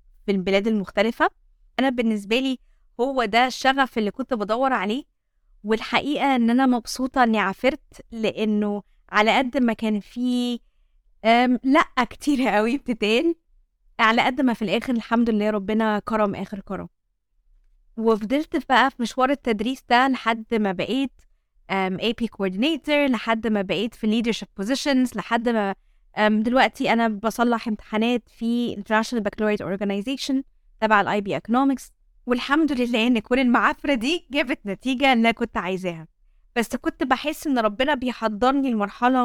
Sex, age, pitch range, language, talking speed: female, 20-39, 215-270 Hz, Arabic, 135 wpm